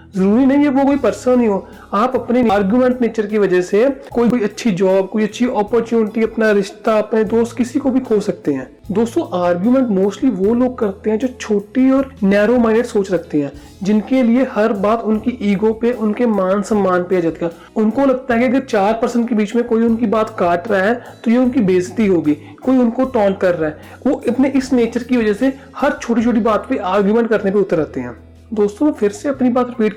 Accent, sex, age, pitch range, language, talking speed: native, male, 40-59, 195-240 Hz, Hindi, 220 wpm